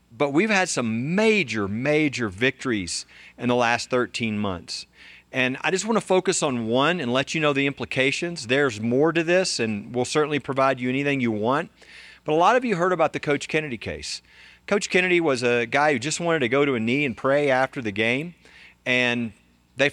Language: English